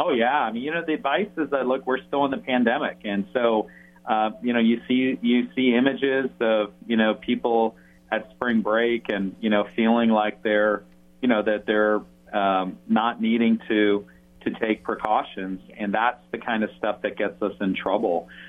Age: 40-59